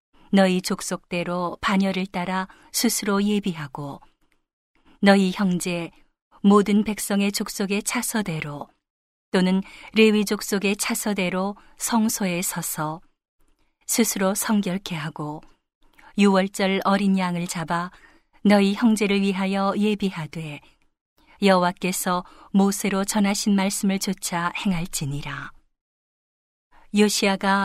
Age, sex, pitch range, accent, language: 40-59, female, 180-210 Hz, native, Korean